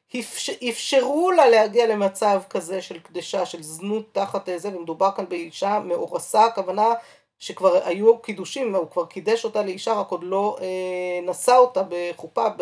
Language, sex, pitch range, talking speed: Hebrew, female, 175-220 Hz, 150 wpm